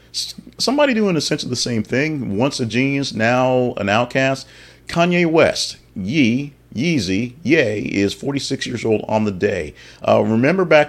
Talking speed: 150 wpm